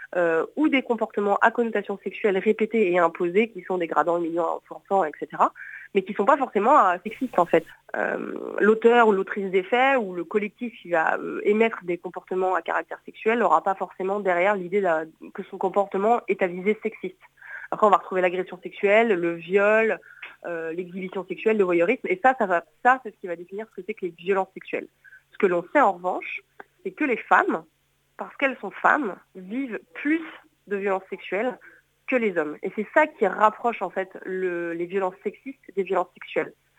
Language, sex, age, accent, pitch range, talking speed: French, female, 30-49, French, 180-220 Hz, 195 wpm